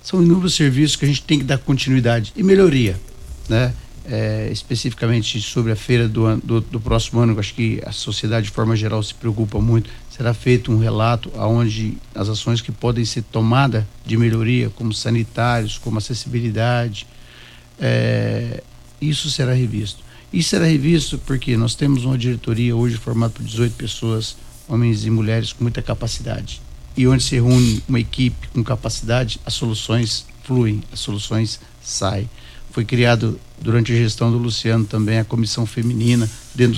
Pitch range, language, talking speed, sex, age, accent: 115-125 Hz, Portuguese, 165 wpm, male, 60-79, Brazilian